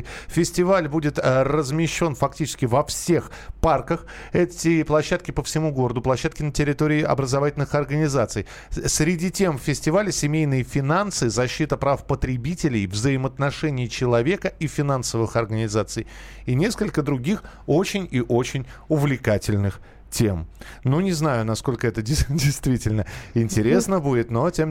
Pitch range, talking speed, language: 115-155 Hz, 115 wpm, Russian